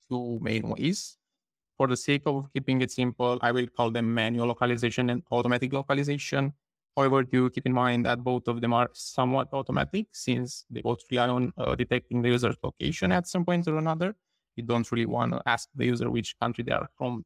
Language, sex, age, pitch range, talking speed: English, male, 20-39, 120-140 Hz, 205 wpm